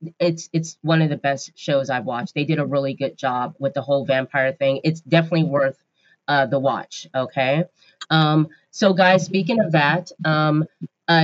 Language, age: English, 30-49